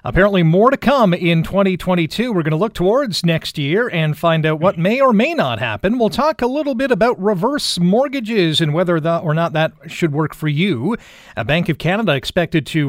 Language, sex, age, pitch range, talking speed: English, male, 40-59, 150-205 Hz, 210 wpm